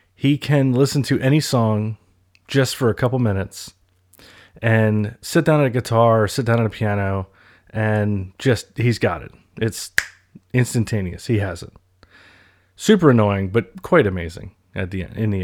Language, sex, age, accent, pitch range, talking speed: English, male, 30-49, American, 95-115 Hz, 165 wpm